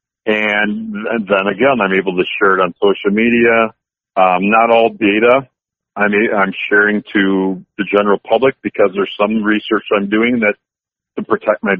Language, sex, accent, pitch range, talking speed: English, male, American, 95-110 Hz, 165 wpm